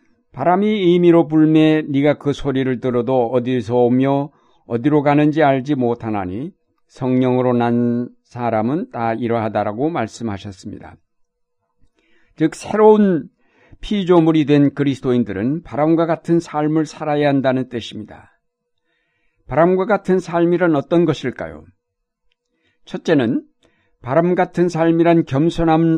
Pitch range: 125-160 Hz